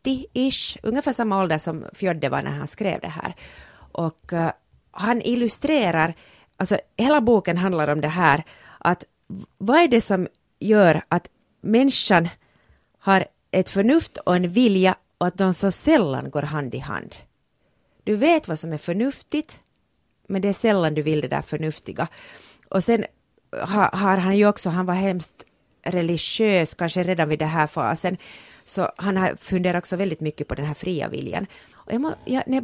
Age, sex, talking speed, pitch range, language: 30-49, female, 175 wpm, 165-225 Hz, Swedish